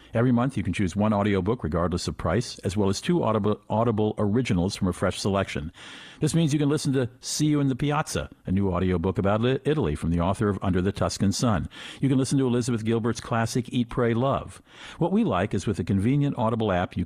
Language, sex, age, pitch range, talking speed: English, male, 50-69, 90-120 Hz, 230 wpm